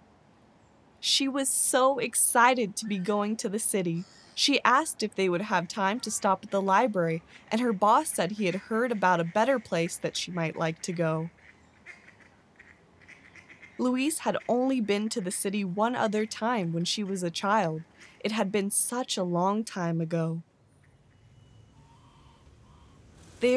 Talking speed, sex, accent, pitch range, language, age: 160 wpm, female, American, 175-230 Hz, English, 20-39